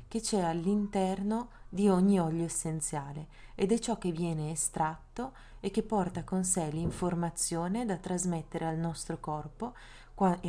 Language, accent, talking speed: Italian, native, 145 wpm